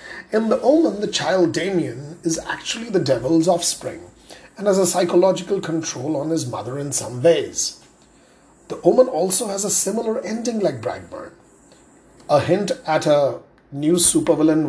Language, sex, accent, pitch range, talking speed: English, male, Indian, 160-200 Hz, 150 wpm